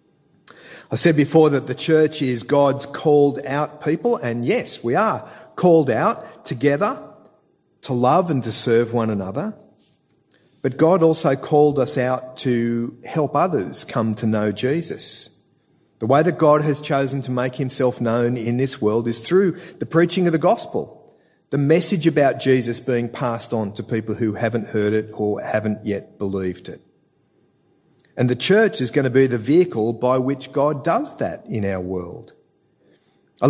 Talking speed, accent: 170 wpm, Australian